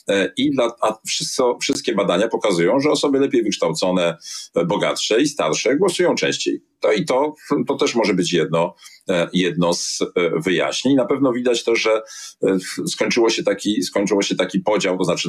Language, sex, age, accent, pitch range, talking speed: Polish, male, 40-59, native, 90-130 Hz, 135 wpm